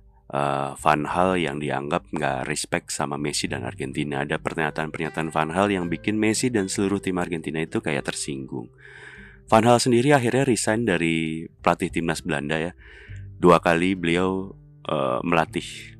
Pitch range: 80-110 Hz